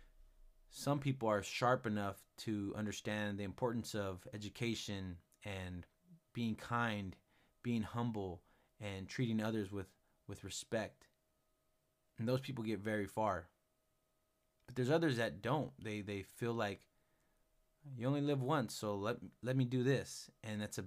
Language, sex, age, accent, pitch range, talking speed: English, male, 20-39, American, 95-120 Hz, 145 wpm